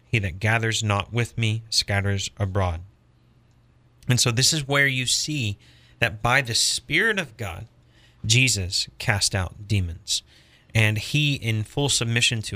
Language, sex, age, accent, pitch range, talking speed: English, male, 30-49, American, 100-120 Hz, 150 wpm